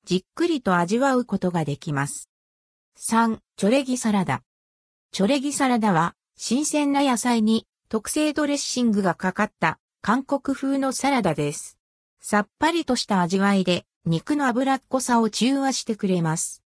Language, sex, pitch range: Japanese, female, 175-265 Hz